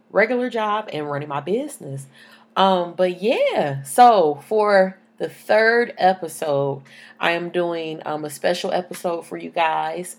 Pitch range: 155-205 Hz